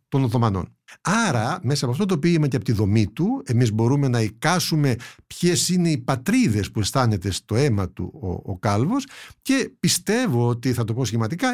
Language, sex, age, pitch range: Greek, male, 60-79, 110-165 Hz